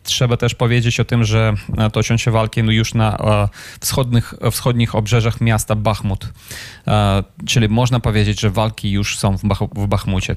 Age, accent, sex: 20-39, native, male